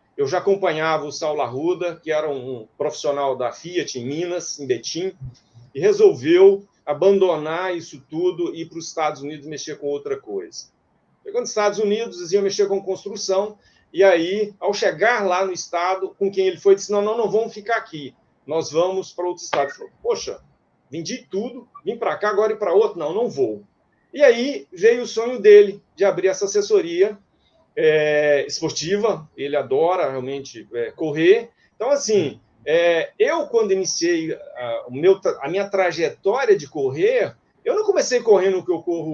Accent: Brazilian